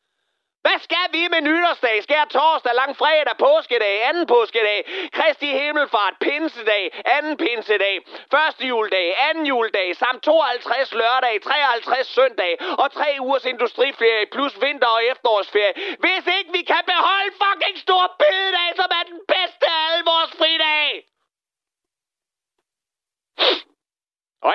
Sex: male